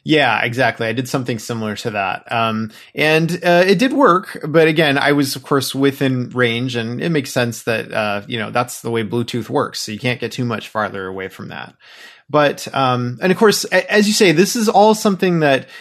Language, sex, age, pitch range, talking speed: English, male, 20-39, 120-175 Hz, 220 wpm